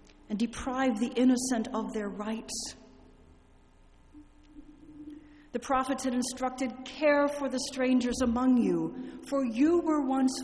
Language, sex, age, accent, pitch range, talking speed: German, female, 40-59, American, 225-295 Hz, 120 wpm